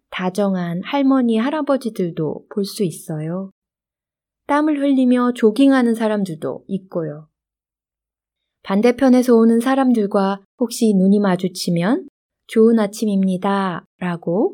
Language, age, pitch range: Korean, 20-39, 180-250 Hz